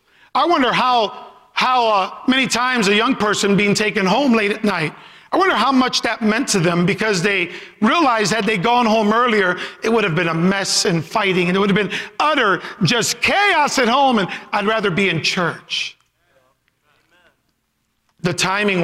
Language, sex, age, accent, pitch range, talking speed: English, male, 50-69, American, 180-250 Hz, 185 wpm